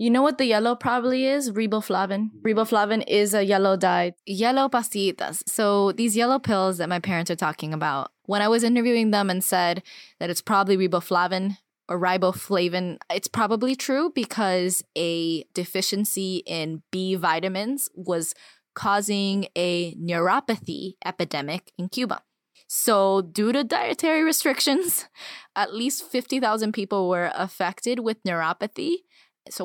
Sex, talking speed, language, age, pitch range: female, 140 wpm, English, 10-29, 175-225 Hz